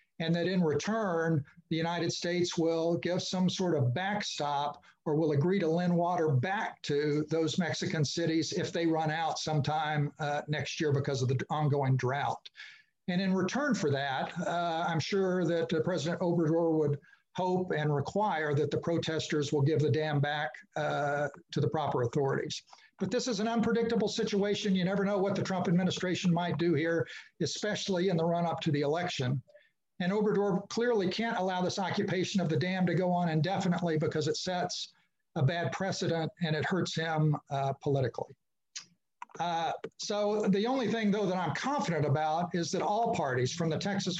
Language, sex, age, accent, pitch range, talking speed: English, male, 60-79, American, 155-190 Hz, 180 wpm